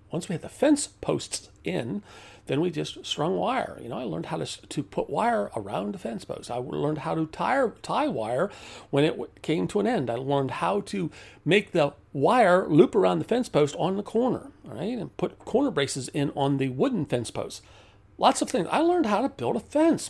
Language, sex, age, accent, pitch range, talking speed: English, male, 40-59, American, 105-170 Hz, 220 wpm